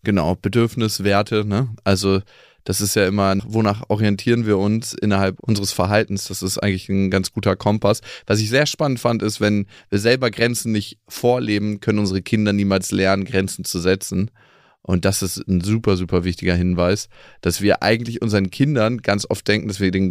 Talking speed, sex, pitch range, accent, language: 180 wpm, male, 95-120 Hz, German, German